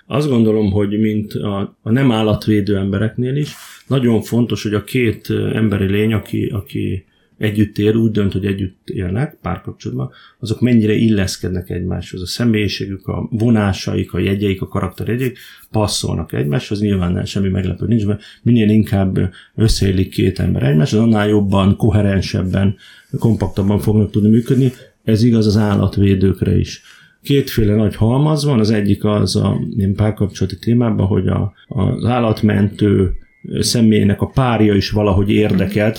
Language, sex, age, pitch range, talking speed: Hungarian, male, 30-49, 100-115 Hz, 145 wpm